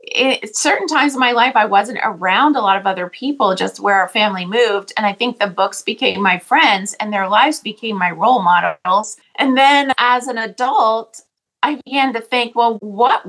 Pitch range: 195-245 Hz